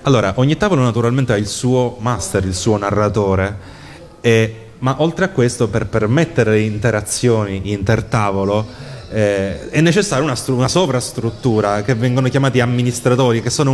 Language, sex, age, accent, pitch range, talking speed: Italian, male, 30-49, native, 110-135 Hz, 135 wpm